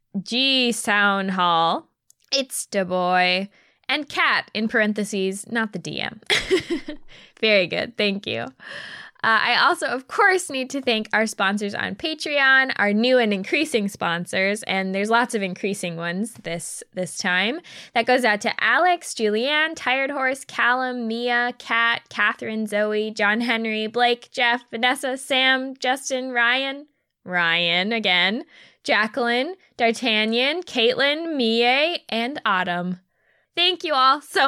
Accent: American